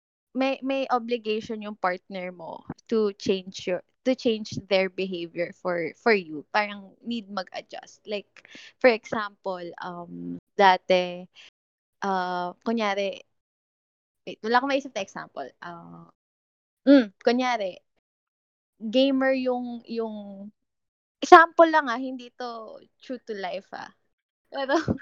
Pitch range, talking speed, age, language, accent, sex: 190-245 Hz, 105 wpm, 20-39, English, Filipino, female